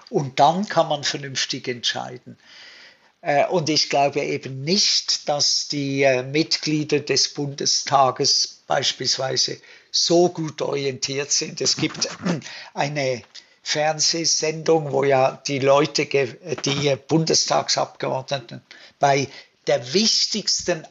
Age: 60-79